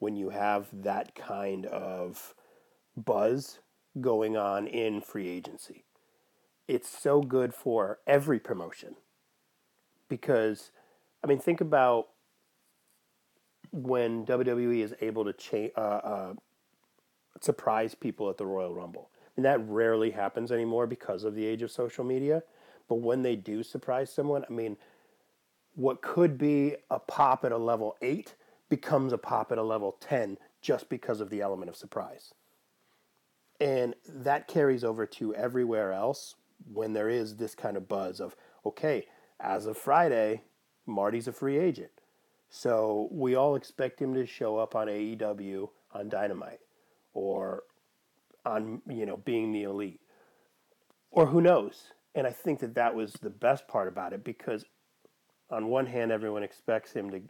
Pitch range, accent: 105-130 Hz, American